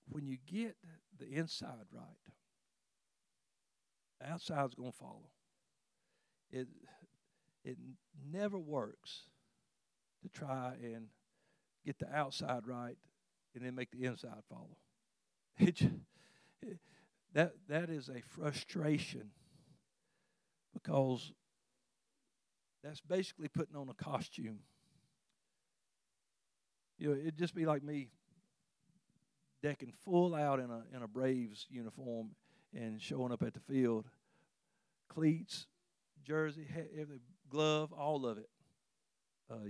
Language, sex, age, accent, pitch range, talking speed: English, male, 60-79, American, 125-160 Hz, 110 wpm